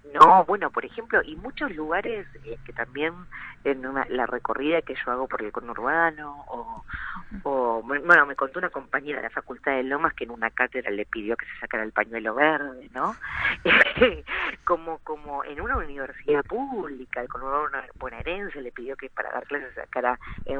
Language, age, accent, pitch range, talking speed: Spanish, 40-59, American, 135-175 Hz, 190 wpm